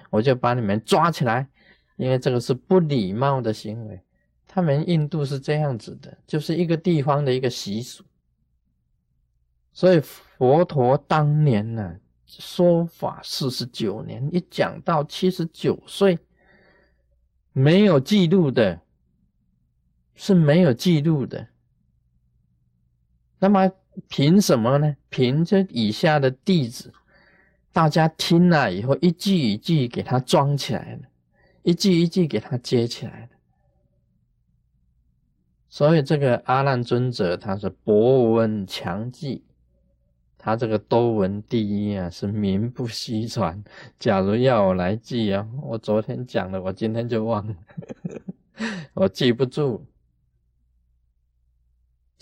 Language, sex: Chinese, male